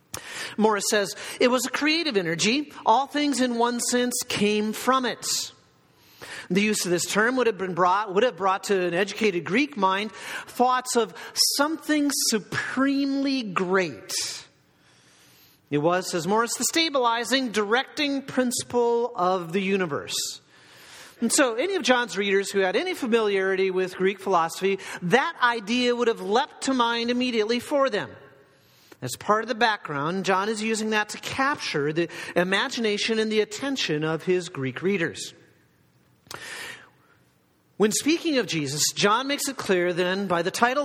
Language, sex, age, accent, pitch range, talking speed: English, male, 40-59, American, 185-255 Hz, 150 wpm